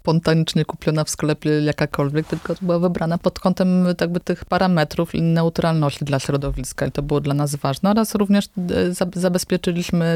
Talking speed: 150 wpm